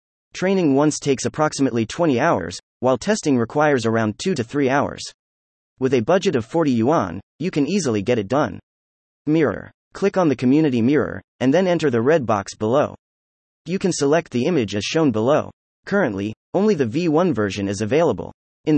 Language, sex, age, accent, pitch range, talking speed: English, male, 30-49, American, 110-160 Hz, 175 wpm